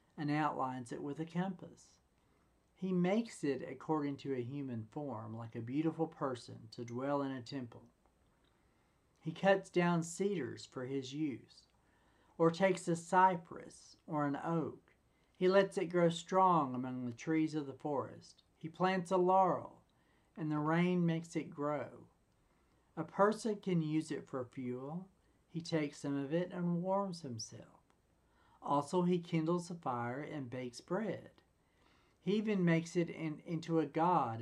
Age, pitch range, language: 50-69, 125-175 Hz, English